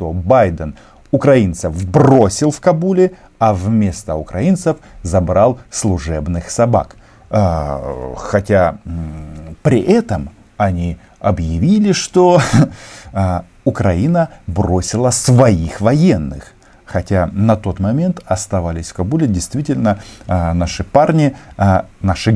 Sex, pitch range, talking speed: male, 90-115 Hz, 100 wpm